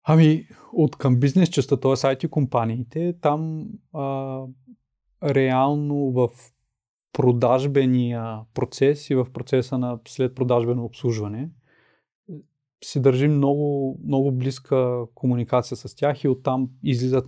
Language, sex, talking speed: Bulgarian, male, 110 wpm